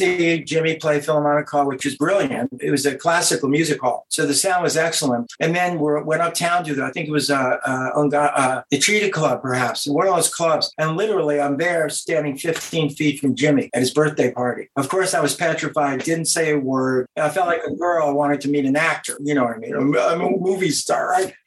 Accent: American